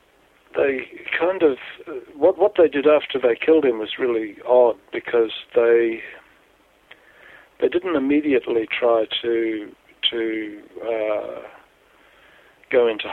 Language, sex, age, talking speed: French, male, 50-69, 115 wpm